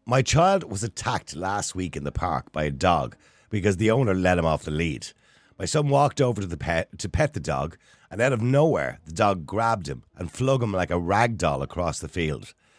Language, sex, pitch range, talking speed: English, male, 90-130 Hz, 220 wpm